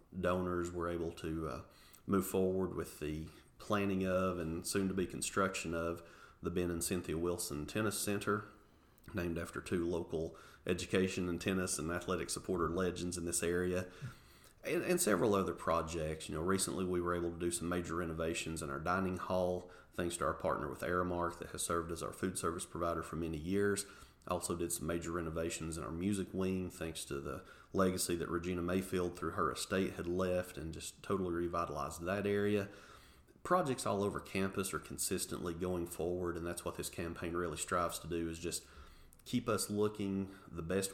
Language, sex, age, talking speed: English, male, 30-49, 185 wpm